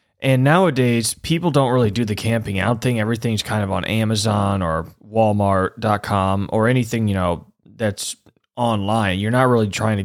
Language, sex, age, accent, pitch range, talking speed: English, male, 20-39, American, 100-115 Hz, 165 wpm